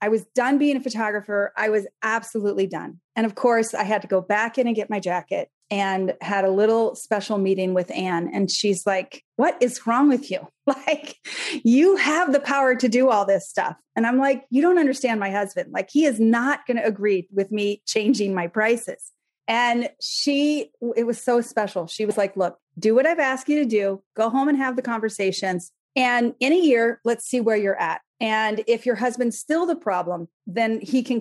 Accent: American